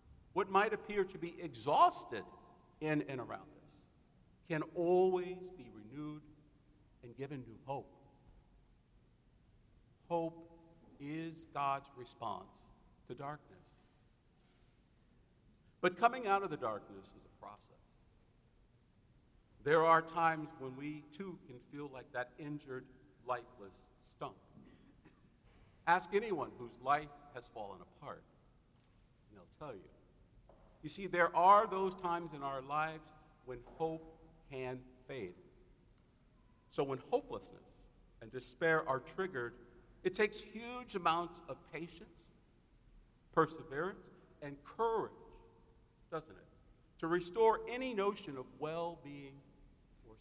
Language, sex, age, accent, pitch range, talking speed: English, male, 50-69, American, 125-175 Hz, 115 wpm